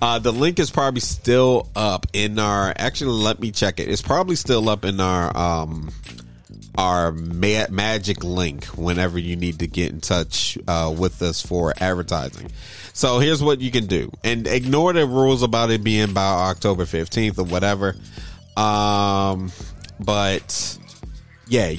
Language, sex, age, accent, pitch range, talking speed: English, male, 30-49, American, 90-120 Hz, 160 wpm